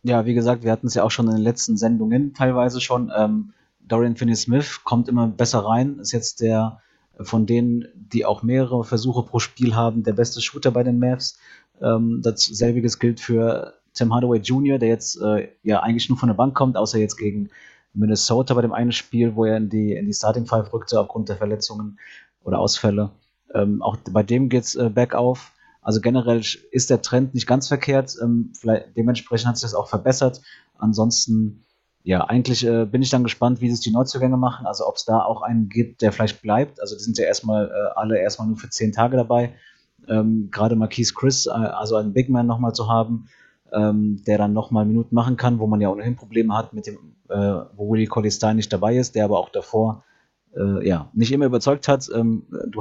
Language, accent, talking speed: German, German, 210 wpm